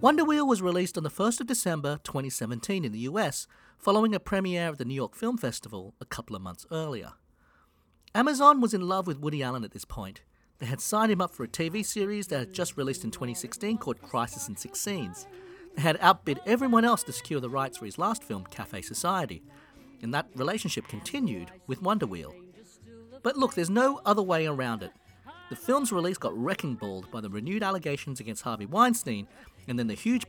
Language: English